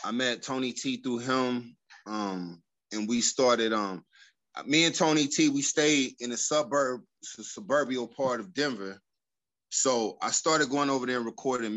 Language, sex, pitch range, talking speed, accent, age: English, male, 105-125 Hz, 175 wpm, American, 20-39